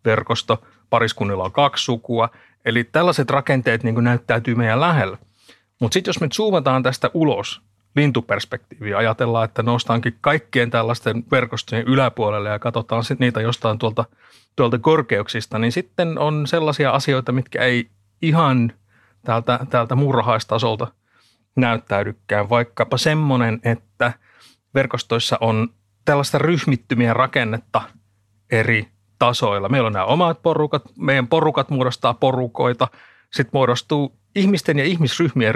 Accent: native